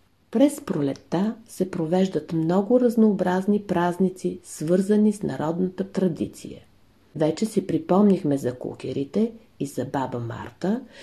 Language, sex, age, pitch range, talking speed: Bulgarian, female, 50-69, 140-210 Hz, 110 wpm